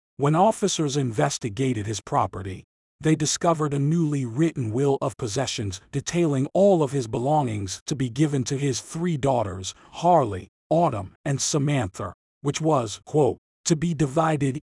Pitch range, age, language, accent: 110-160 Hz, 50-69, English, American